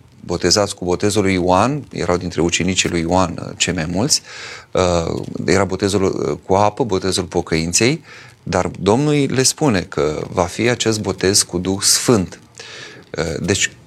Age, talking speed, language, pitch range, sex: 30-49, 145 wpm, Romanian, 90-115 Hz, male